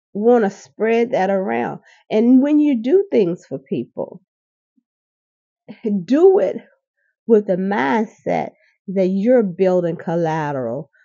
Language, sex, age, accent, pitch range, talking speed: English, female, 40-59, American, 180-225 Hz, 115 wpm